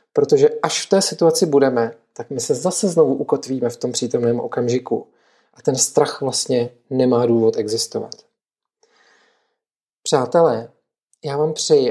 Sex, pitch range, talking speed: male, 140-205 Hz, 135 wpm